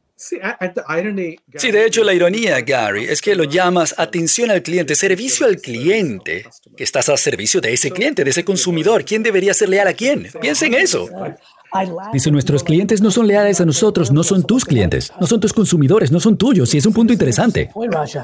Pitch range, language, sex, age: 135-205 Hz, Spanish, male, 50-69